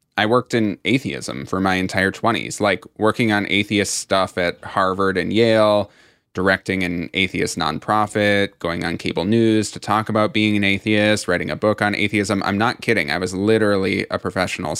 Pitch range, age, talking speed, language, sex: 95-115 Hz, 20-39, 180 wpm, English, male